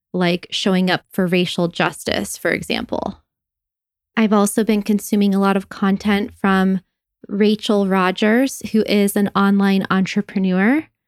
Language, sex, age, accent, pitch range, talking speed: English, female, 20-39, American, 185-210 Hz, 130 wpm